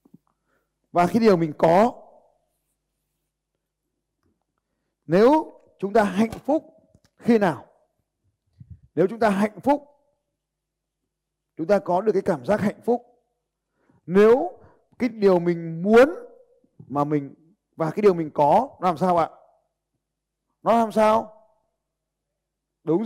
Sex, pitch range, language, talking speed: male, 170-250 Hz, Vietnamese, 120 wpm